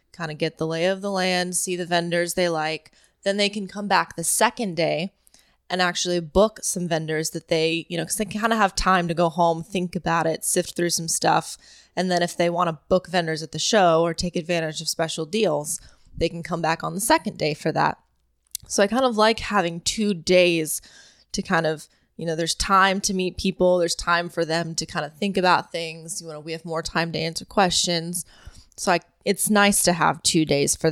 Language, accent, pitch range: English, American, 165-190 Hz